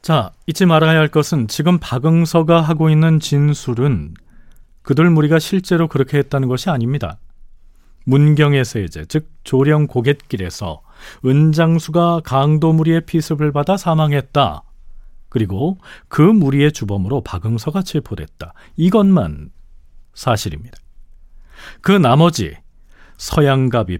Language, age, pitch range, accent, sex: Korean, 40-59, 100-160 Hz, native, male